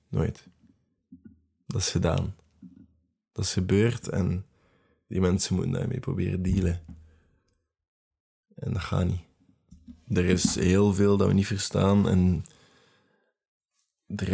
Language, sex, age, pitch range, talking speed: Dutch, male, 20-39, 90-115 Hz, 115 wpm